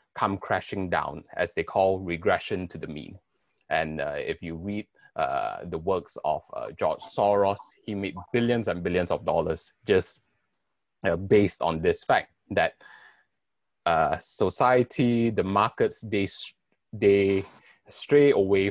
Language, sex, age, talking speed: English, male, 20-39, 140 wpm